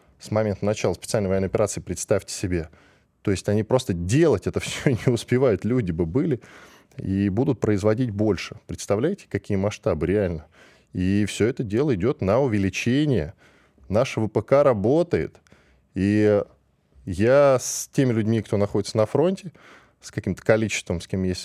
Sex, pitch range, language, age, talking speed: male, 95-130 Hz, Russian, 10-29, 150 wpm